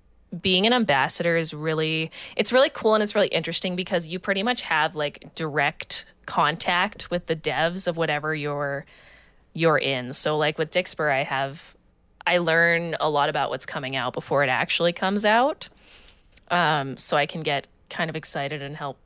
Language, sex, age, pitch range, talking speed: English, female, 20-39, 145-190 Hz, 180 wpm